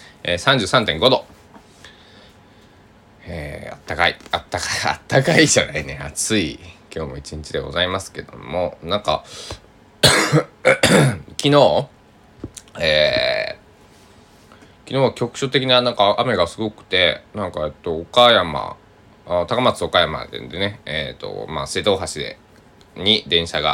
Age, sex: 20-39, male